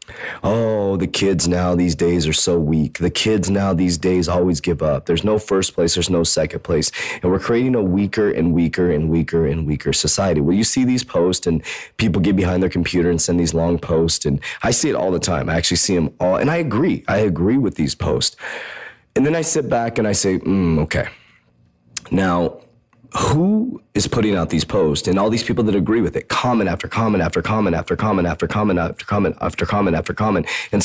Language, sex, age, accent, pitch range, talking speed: English, male, 30-49, American, 85-105 Hz, 225 wpm